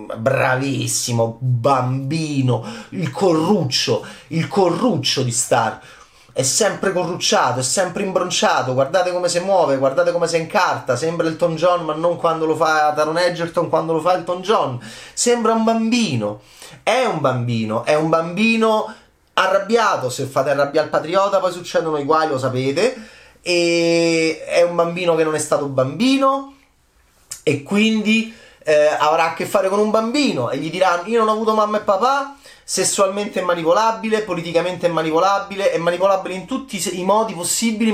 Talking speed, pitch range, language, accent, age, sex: 165 wpm, 145-205 Hz, Italian, native, 30-49, male